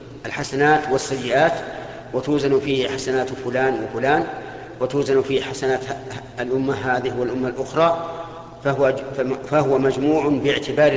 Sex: male